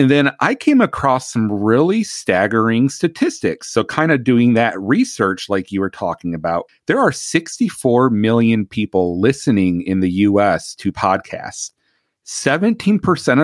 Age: 40-59